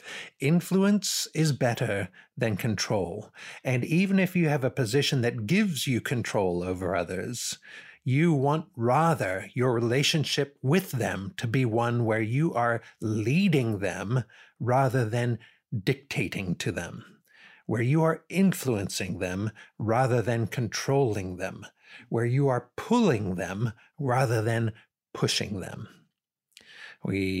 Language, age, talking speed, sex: English, 60-79, 125 wpm, male